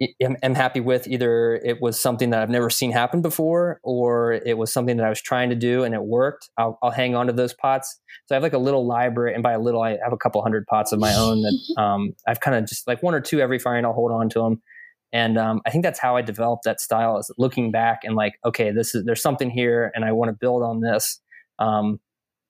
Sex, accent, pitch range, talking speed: male, American, 110-125 Hz, 265 wpm